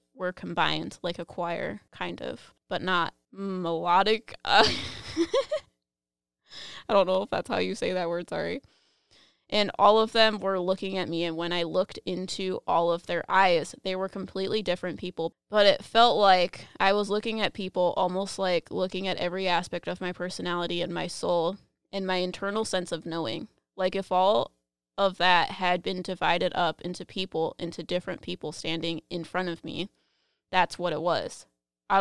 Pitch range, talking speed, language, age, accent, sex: 170-190 Hz, 180 wpm, English, 20-39, American, female